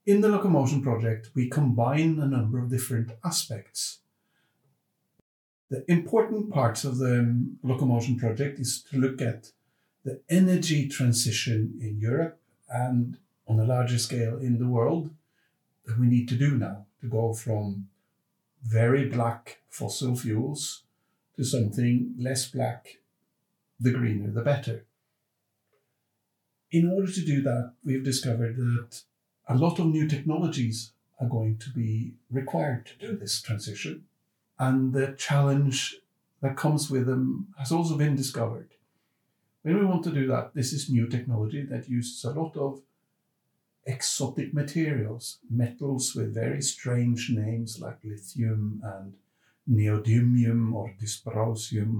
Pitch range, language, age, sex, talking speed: 115-140 Hz, English, 60-79, male, 135 wpm